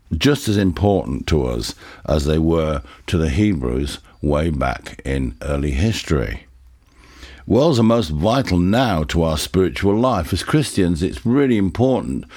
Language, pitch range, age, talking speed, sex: English, 80-105 Hz, 60-79, 145 wpm, male